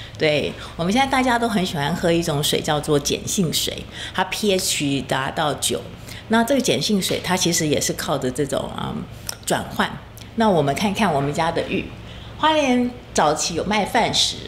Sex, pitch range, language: female, 150-210 Hz, Chinese